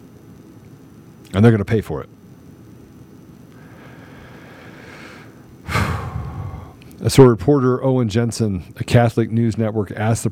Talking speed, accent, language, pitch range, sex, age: 100 wpm, American, English, 105-120 Hz, male, 40-59